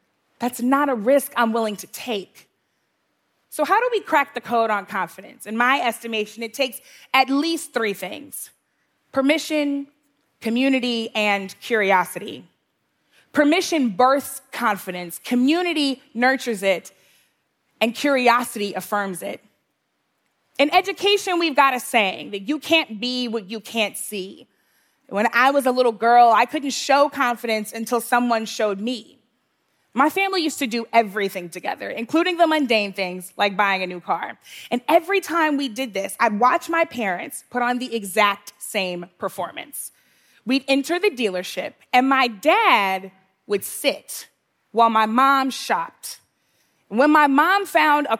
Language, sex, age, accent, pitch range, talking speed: English, female, 20-39, American, 215-285 Hz, 145 wpm